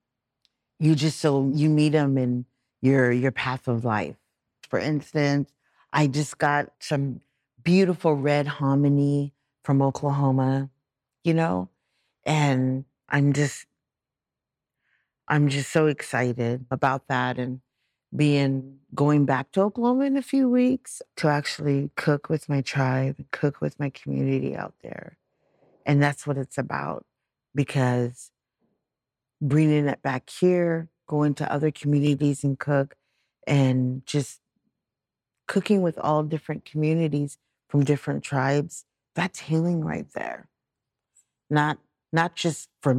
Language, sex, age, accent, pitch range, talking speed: English, female, 50-69, American, 130-150 Hz, 125 wpm